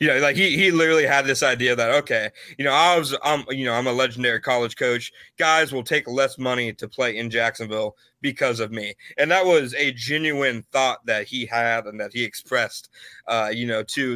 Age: 30-49